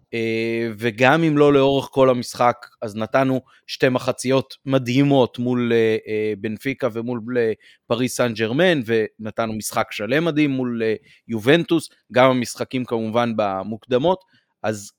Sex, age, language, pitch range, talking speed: male, 30-49, Hebrew, 110-135 Hz, 130 wpm